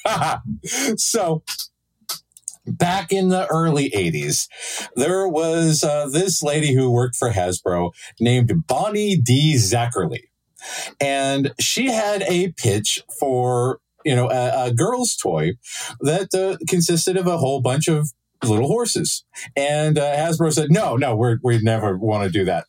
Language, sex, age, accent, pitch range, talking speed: English, male, 50-69, American, 120-160 Hz, 145 wpm